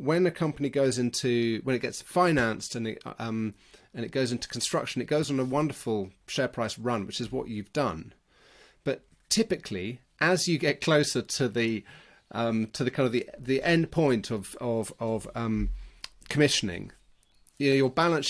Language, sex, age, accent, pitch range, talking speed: English, male, 30-49, British, 115-140 Hz, 185 wpm